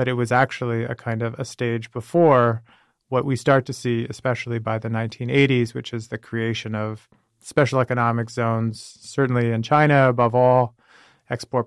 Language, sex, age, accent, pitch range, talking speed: English, male, 30-49, American, 115-130 Hz, 170 wpm